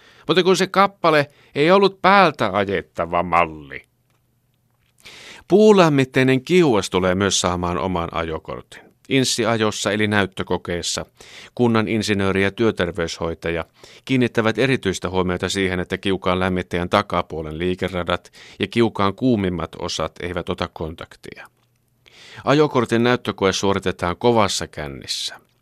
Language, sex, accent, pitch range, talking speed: Finnish, male, native, 90-115 Hz, 105 wpm